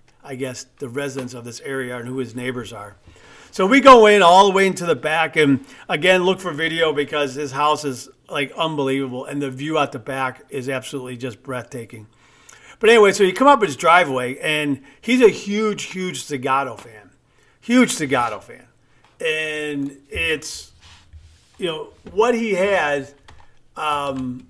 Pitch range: 125-160 Hz